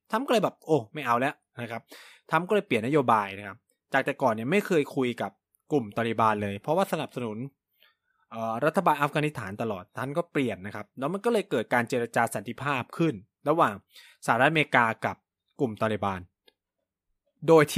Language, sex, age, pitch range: Thai, male, 20-39, 115-160 Hz